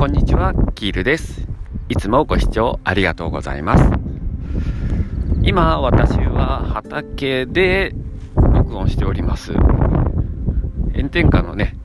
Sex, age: male, 40-59